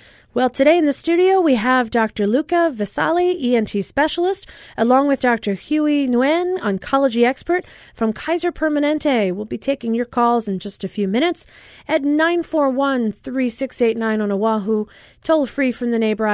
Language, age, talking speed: English, 30-49, 145 wpm